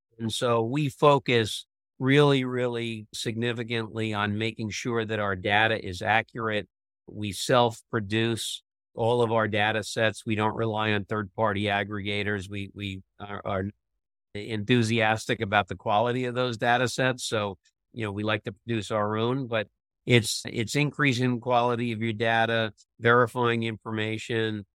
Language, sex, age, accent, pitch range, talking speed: English, male, 50-69, American, 110-135 Hz, 145 wpm